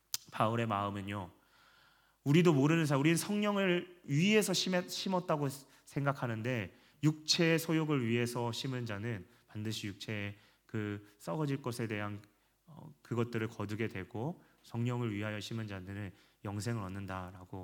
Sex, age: male, 30-49